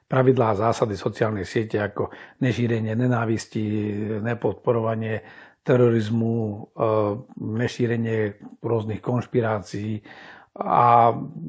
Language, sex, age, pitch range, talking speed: Slovak, male, 50-69, 115-135 Hz, 75 wpm